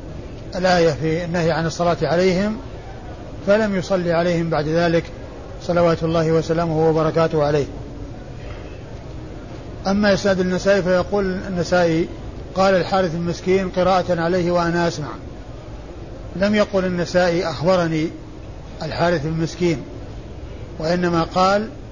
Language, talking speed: Arabic, 100 wpm